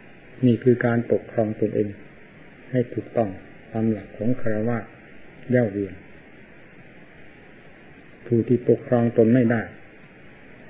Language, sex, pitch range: Thai, male, 110-125 Hz